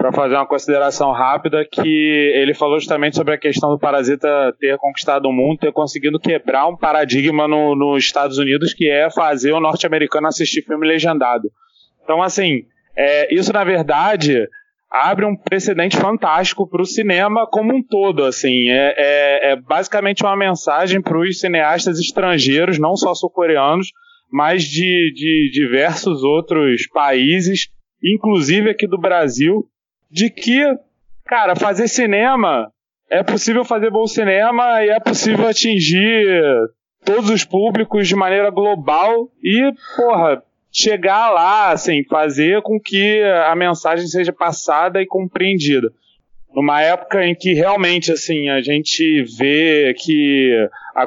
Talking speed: 135 wpm